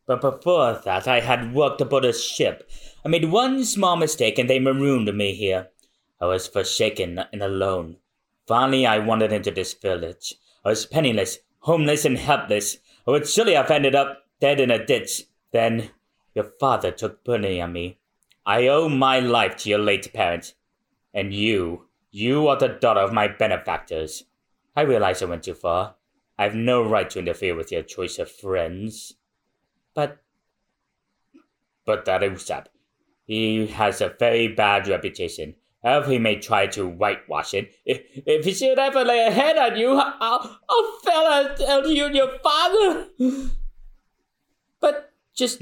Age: 30-49